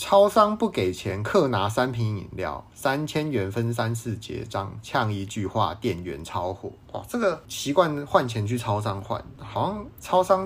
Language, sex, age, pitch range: Chinese, male, 30-49, 110-145 Hz